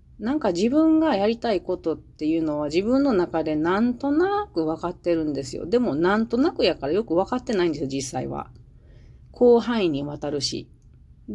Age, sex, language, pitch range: 40-59, female, Japanese, 150-210 Hz